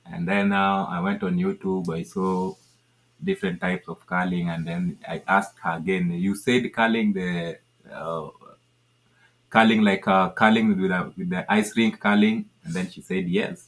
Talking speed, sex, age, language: 175 wpm, male, 30-49, English